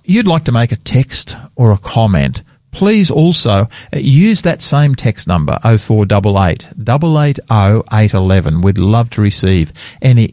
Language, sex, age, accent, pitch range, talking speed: English, male, 50-69, Australian, 105-155 Hz, 175 wpm